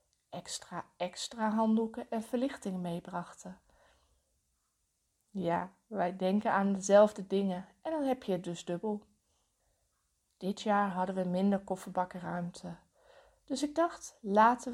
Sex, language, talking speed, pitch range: female, Dutch, 120 wpm, 180-235 Hz